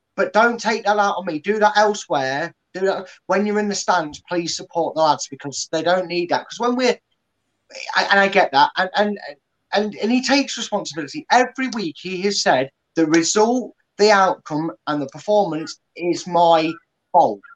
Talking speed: 190 wpm